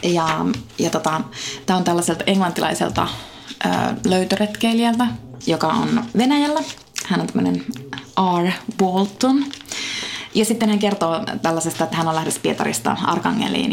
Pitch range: 175-235 Hz